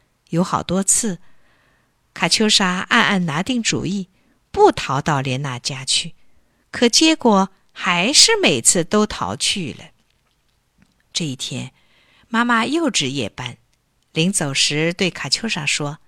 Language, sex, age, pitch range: Chinese, female, 50-69, 160-240 Hz